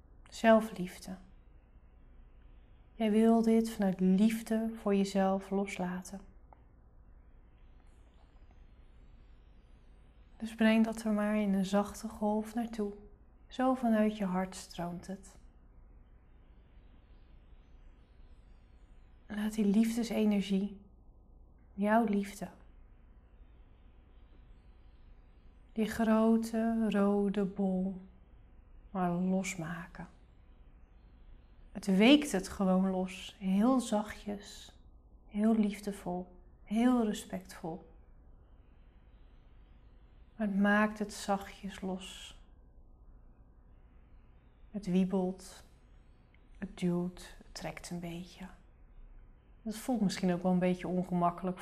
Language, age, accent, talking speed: Dutch, 30-49, Dutch, 80 wpm